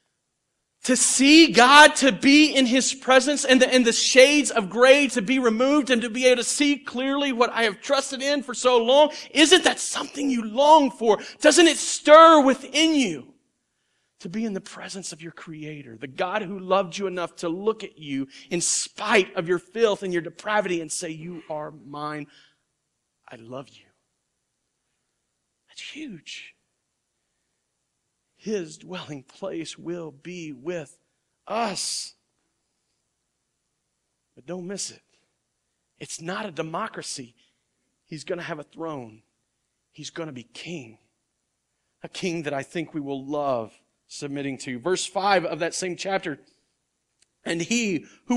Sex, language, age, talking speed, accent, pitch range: male, English, 40-59, 155 wpm, American, 150-250 Hz